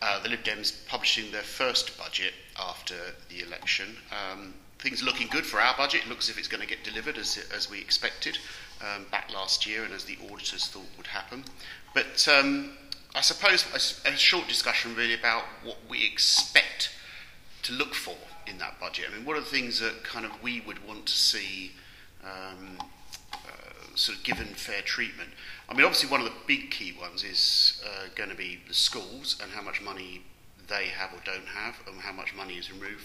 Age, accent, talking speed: 40-59, British, 205 wpm